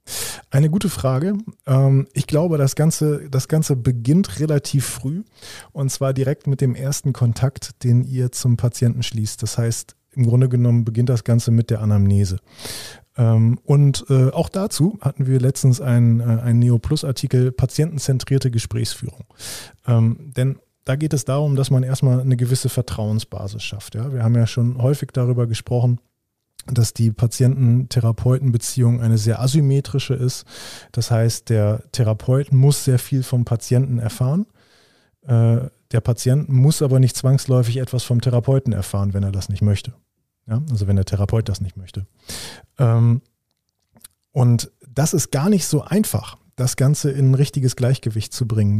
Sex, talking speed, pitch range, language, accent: male, 145 wpm, 115-135 Hz, German, German